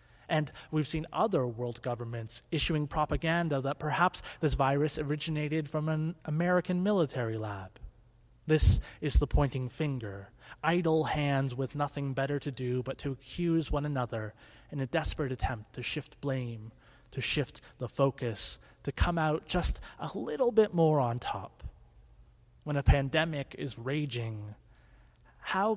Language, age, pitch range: English, 30-49, 120-155 Hz